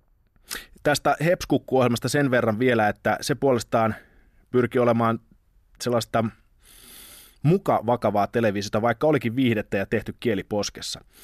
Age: 20-39